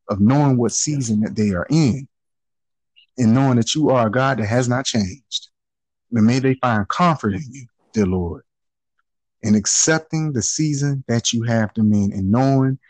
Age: 30-49